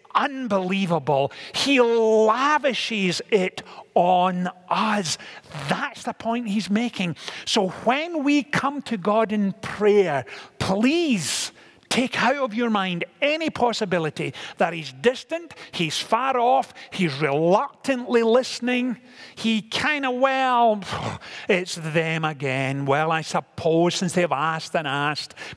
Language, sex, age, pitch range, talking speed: English, male, 50-69, 155-225 Hz, 120 wpm